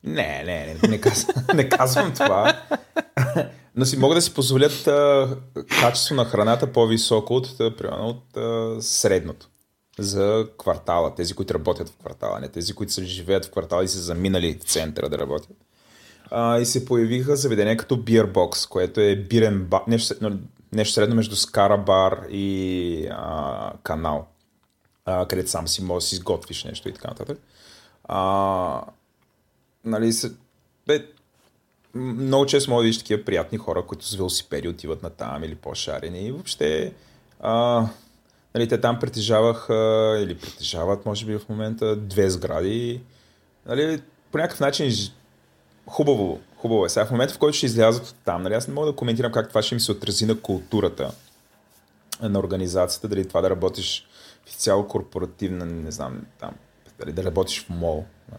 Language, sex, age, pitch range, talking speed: Bulgarian, male, 30-49, 95-120 Hz, 160 wpm